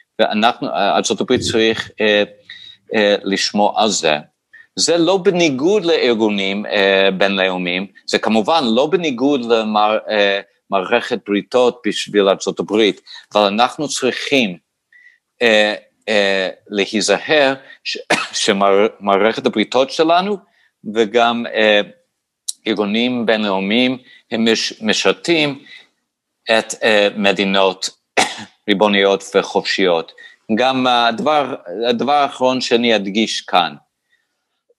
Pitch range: 100-135 Hz